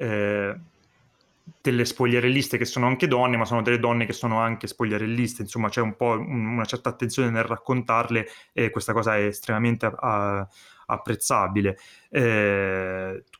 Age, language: 30-49, Italian